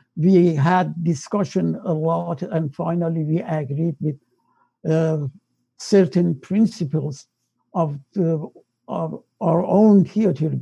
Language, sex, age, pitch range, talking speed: English, male, 60-79, 165-200 Hz, 100 wpm